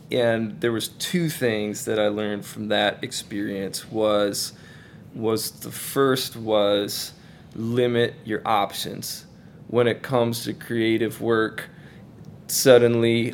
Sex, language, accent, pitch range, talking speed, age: male, English, American, 110-125 Hz, 115 wpm, 20-39